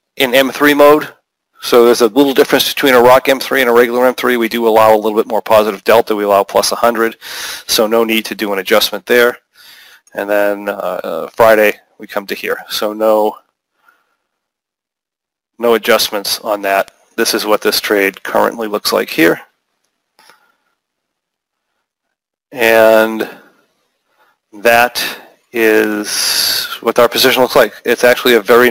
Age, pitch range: 40-59, 110-130 Hz